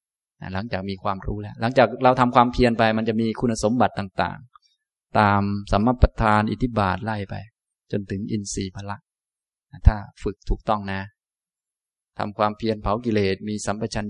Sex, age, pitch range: male, 20-39, 100-125 Hz